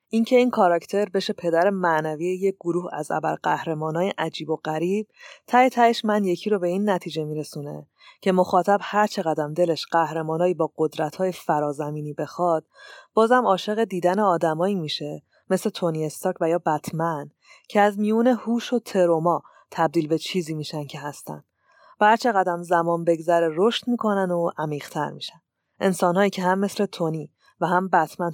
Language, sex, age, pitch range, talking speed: Persian, female, 30-49, 165-200 Hz, 160 wpm